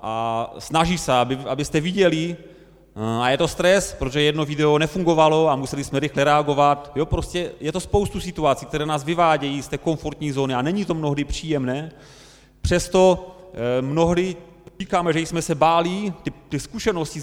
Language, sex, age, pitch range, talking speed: Czech, male, 30-49, 130-165 Hz, 165 wpm